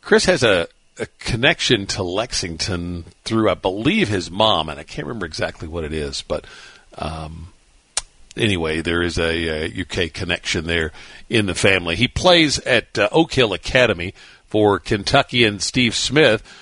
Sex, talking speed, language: male, 160 wpm, English